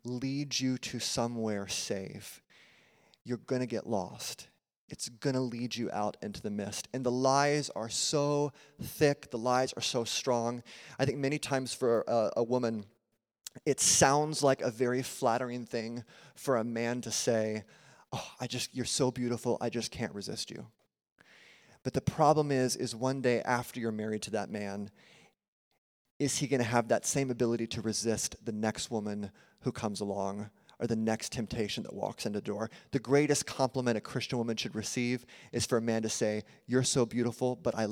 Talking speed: 180 wpm